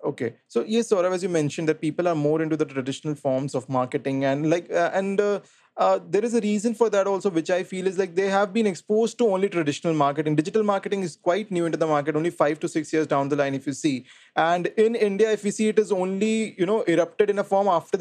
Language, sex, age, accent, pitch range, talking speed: English, male, 20-39, Indian, 160-205 Hz, 265 wpm